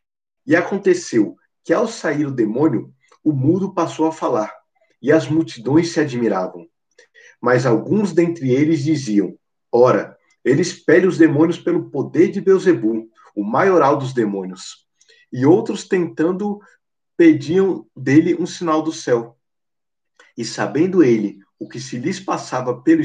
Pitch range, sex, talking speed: 130-200 Hz, male, 140 wpm